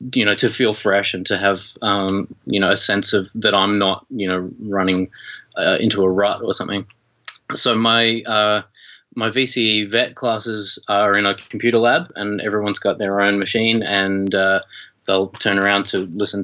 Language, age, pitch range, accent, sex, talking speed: English, 20-39, 95-105 Hz, Australian, male, 185 wpm